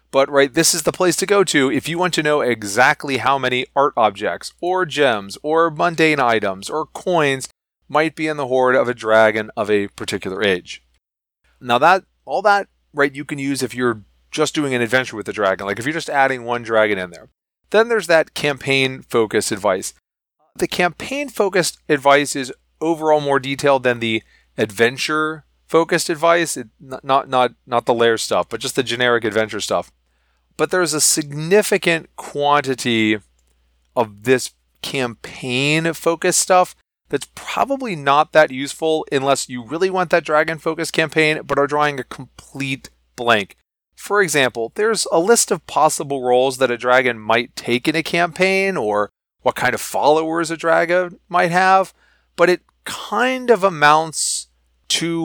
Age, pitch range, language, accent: 30-49, 120-165 Hz, English, American